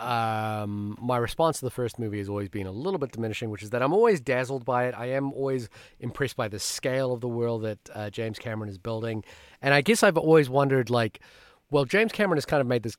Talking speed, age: 245 wpm, 30-49